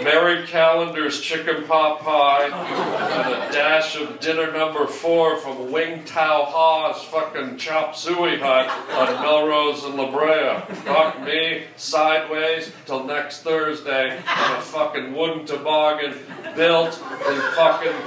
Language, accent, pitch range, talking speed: English, American, 150-180 Hz, 130 wpm